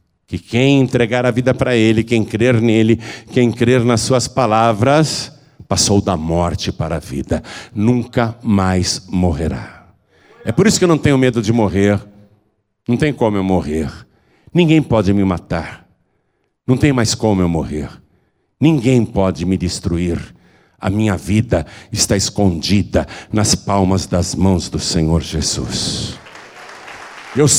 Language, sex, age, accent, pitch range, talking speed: Portuguese, male, 60-79, Brazilian, 95-130 Hz, 145 wpm